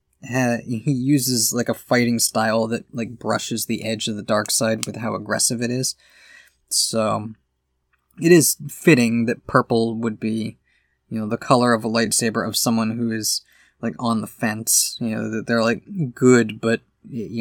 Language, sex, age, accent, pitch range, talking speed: English, male, 20-39, American, 110-125 Hz, 175 wpm